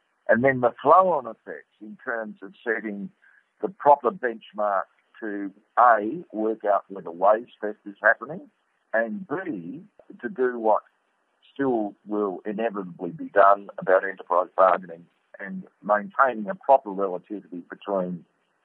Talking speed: 130 wpm